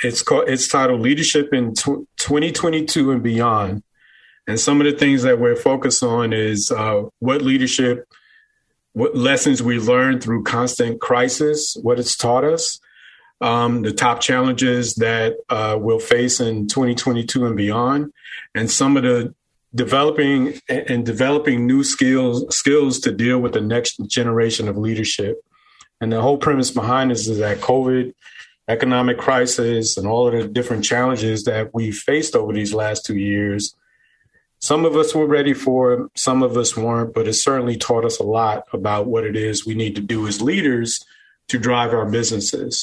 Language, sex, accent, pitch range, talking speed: English, male, American, 115-130 Hz, 170 wpm